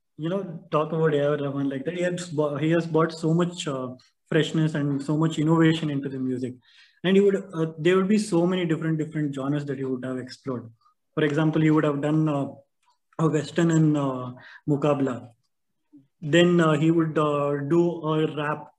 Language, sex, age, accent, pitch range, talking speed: Kannada, male, 20-39, native, 140-165 Hz, 190 wpm